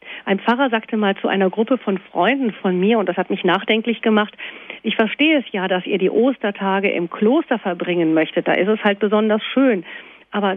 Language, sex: German, female